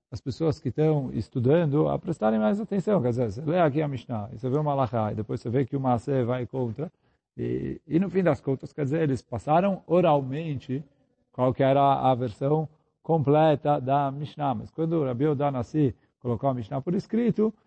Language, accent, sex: Portuguese, Brazilian, male